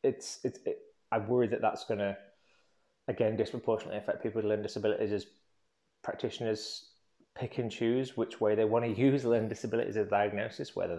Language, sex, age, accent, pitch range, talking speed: English, male, 20-39, British, 95-120 Hz, 180 wpm